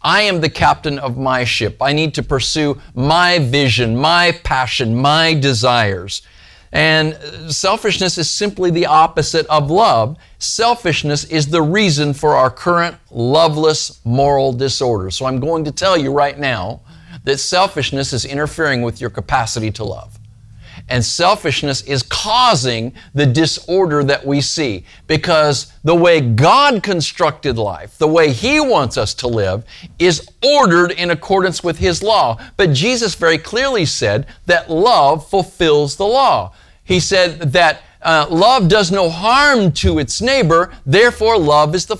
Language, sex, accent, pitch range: English, male, American, 130-175 Hz